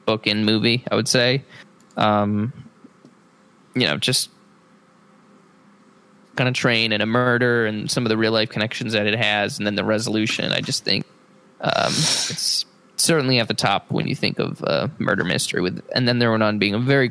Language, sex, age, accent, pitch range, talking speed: English, male, 20-39, American, 115-150 Hz, 195 wpm